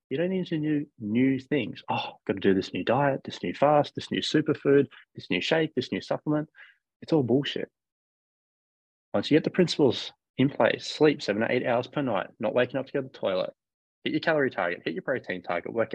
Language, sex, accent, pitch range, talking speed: English, male, Australian, 110-150 Hz, 230 wpm